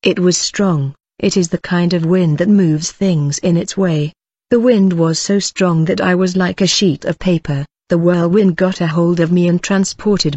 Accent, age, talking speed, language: British, 40-59, 215 wpm, English